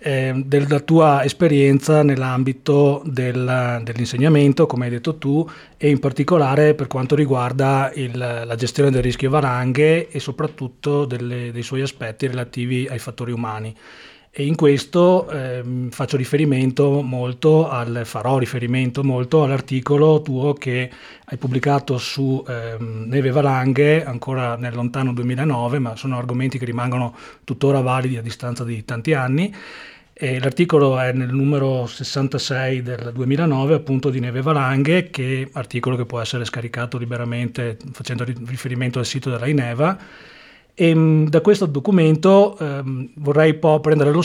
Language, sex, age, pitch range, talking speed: Italian, male, 30-49, 125-150 Hz, 140 wpm